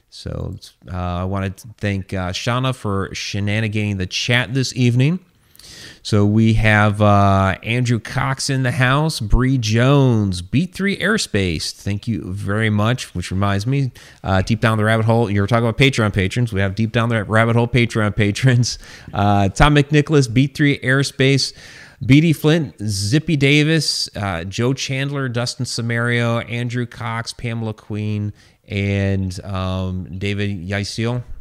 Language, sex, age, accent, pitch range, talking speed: English, male, 30-49, American, 100-130 Hz, 145 wpm